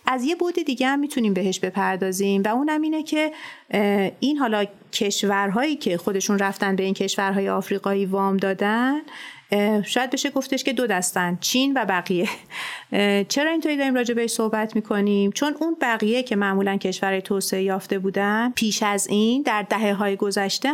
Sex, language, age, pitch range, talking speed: female, Persian, 30-49, 195-245 Hz, 160 wpm